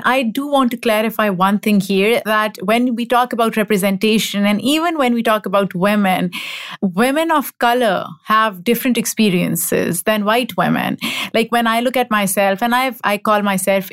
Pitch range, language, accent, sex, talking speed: 200-235 Hz, English, Indian, female, 170 wpm